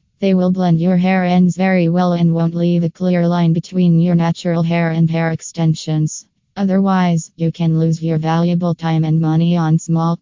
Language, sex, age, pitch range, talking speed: English, female, 20-39, 160-175 Hz, 190 wpm